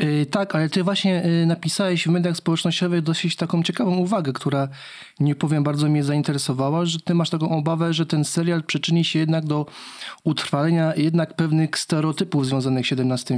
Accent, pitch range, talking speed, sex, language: native, 135-165 Hz, 165 wpm, male, Polish